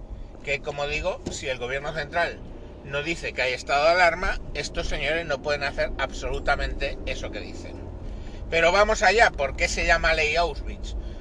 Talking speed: 170 wpm